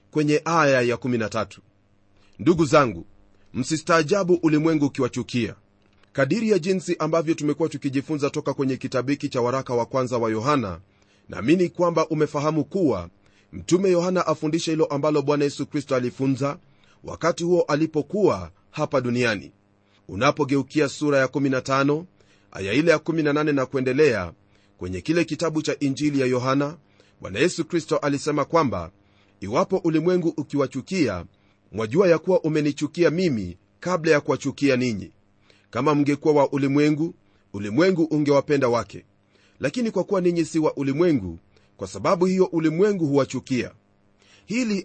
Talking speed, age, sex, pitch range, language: 130 wpm, 40-59, male, 105-155 Hz, Swahili